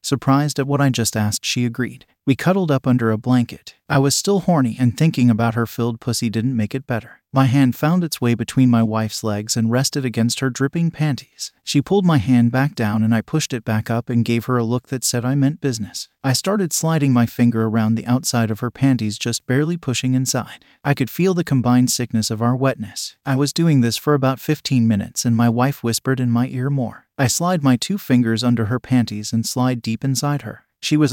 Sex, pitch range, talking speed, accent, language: male, 115-140 Hz, 230 wpm, American, English